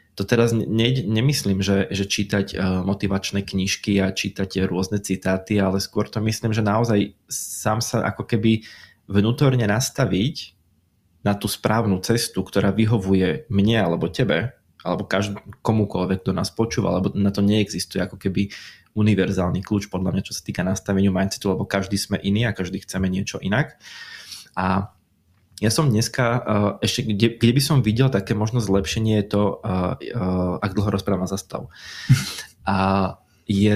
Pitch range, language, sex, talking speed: 95-110 Hz, Slovak, male, 155 wpm